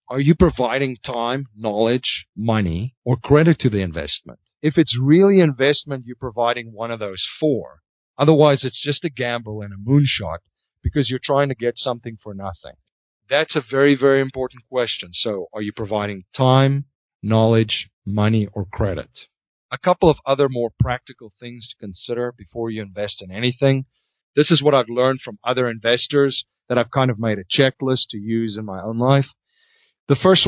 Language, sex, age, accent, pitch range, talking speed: English, male, 40-59, American, 105-135 Hz, 175 wpm